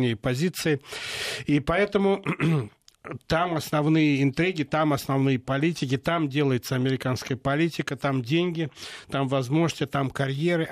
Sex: male